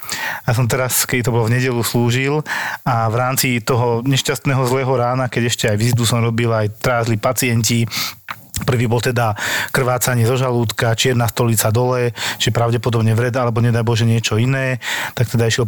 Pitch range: 110-130 Hz